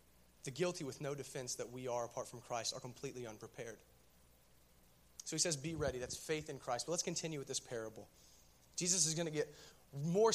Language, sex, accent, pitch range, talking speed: English, male, American, 130-180 Hz, 205 wpm